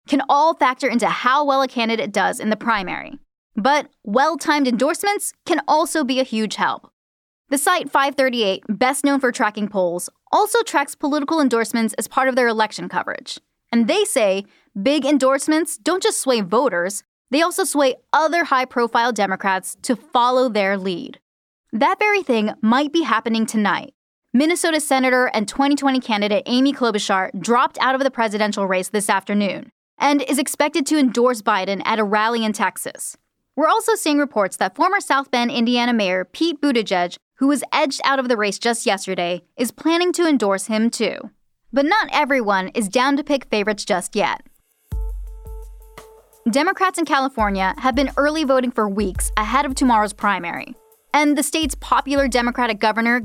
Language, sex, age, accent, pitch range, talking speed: English, female, 10-29, American, 215-290 Hz, 165 wpm